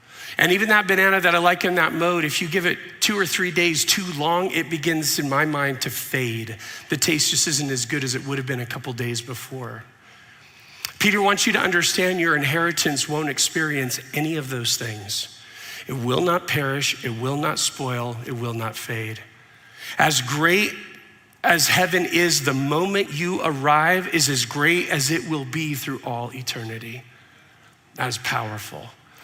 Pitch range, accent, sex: 130-180 Hz, American, male